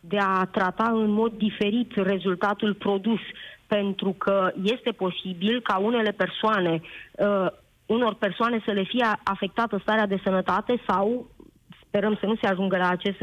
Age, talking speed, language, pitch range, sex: 20-39, 150 wpm, Romanian, 190-225 Hz, female